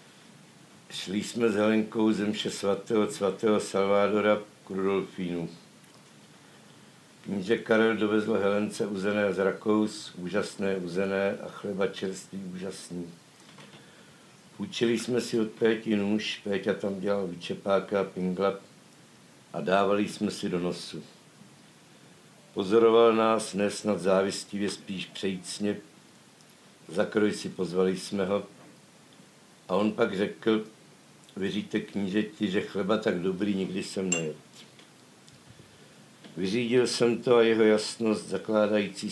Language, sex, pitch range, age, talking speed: Czech, male, 95-110 Hz, 60-79, 110 wpm